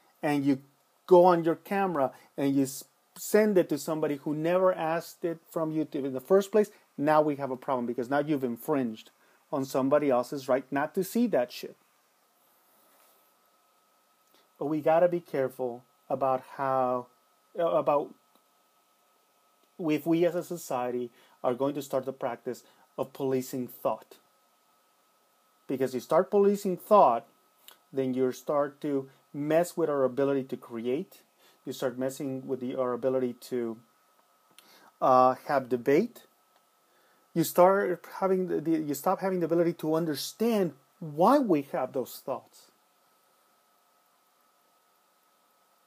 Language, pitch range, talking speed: English, 130-175 Hz, 140 wpm